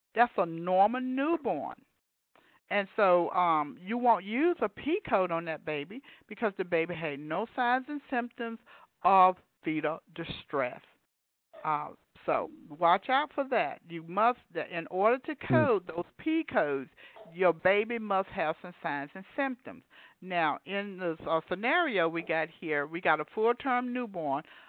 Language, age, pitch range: English, 50-69, 165-235 Hz